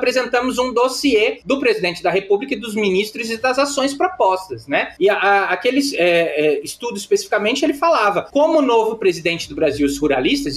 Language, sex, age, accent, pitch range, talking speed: Portuguese, male, 20-39, Brazilian, 185-275 Hz, 185 wpm